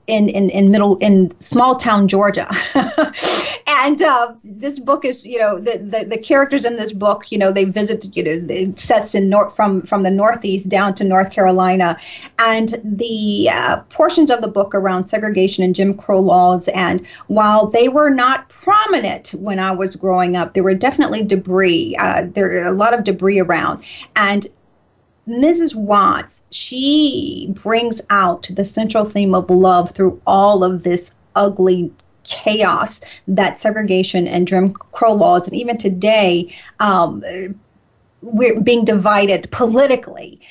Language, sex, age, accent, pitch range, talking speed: English, female, 40-59, American, 190-230 Hz, 155 wpm